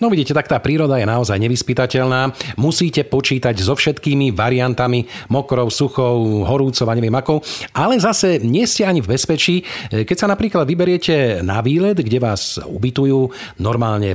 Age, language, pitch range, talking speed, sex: 40-59, Slovak, 110-130 Hz, 145 wpm, male